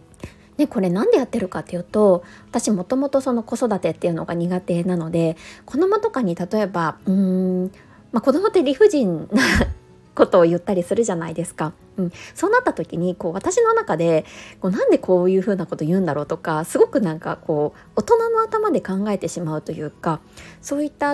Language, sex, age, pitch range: Japanese, female, 20-39, 170-275 Hz